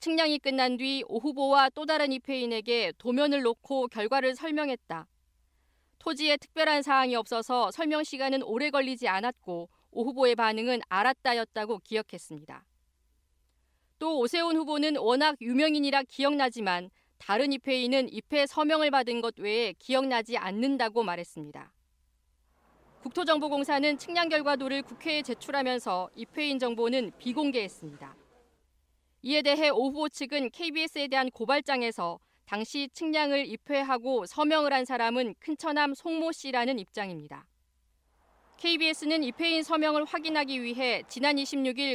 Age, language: 40-59, Korean